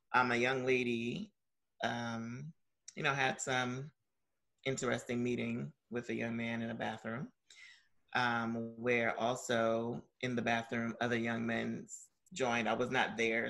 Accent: American